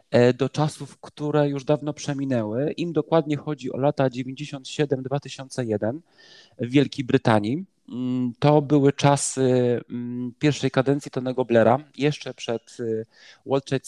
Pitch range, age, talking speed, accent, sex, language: 130-150 Hz, 40-59, 110 wpm, native, male, Polish